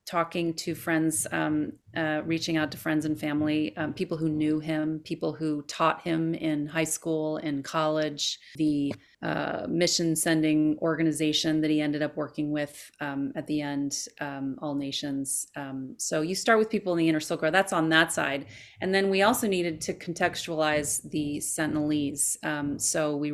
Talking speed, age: 175 wpm, 30-49